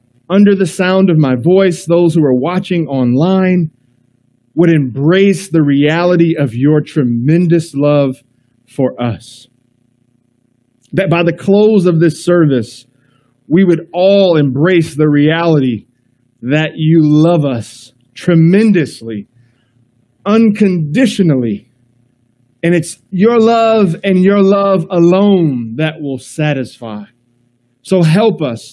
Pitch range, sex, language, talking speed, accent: 125-190 Hz, male, English, 115 wpm, American